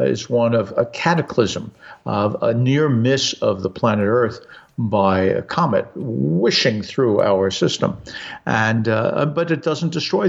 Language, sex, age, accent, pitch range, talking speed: English, male, 50-69, American, 100-145 Hz, 150 wpm